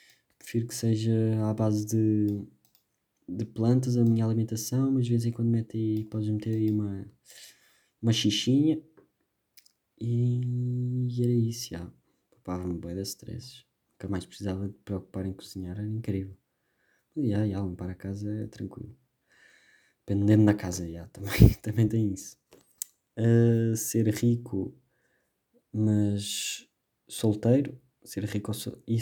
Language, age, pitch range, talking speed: Portuguese, 20-39, 100-120 Hz, 135 wpm